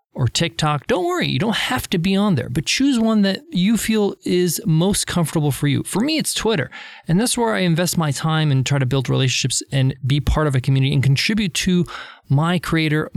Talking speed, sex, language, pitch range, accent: 225 wpm, male, English, 140-200 Hz, American